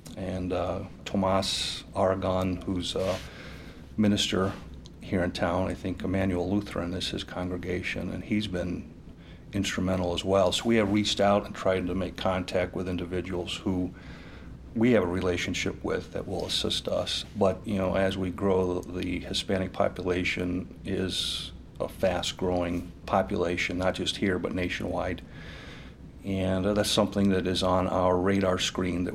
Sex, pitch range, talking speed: male, 90-100 Hz, 150 wpm